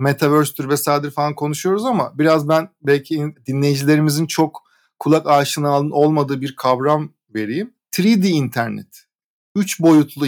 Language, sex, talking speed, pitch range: Turkish, male, 115 wpm, 140-175 Hz